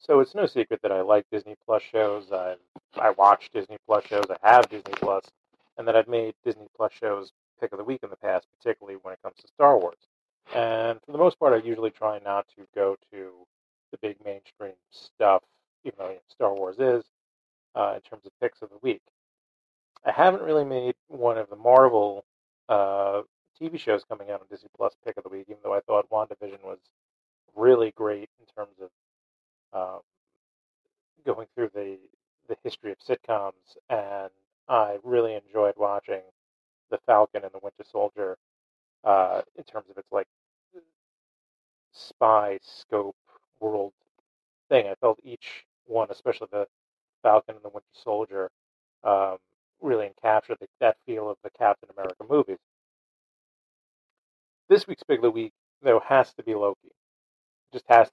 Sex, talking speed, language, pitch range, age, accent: male, 165 wpm, English, 100-130 Hz, 40-59, American